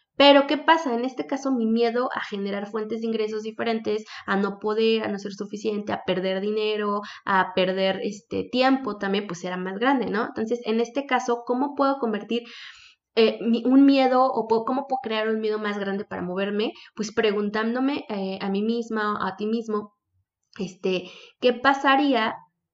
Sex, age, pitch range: female, 20-39, 205-240 Hz